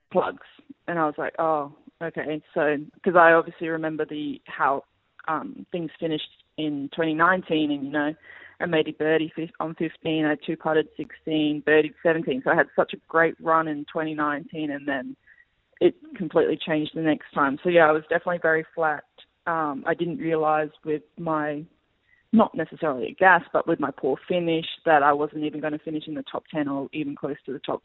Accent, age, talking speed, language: Australian, 20-39, 195 wpm, English